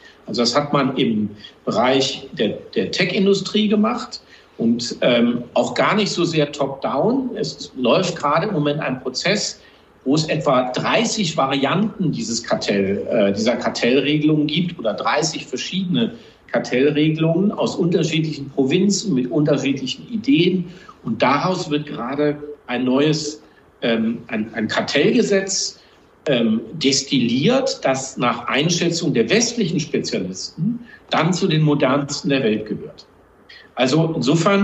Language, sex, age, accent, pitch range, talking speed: German, male, 50-69, German, 135-195 Hz, 125 wpm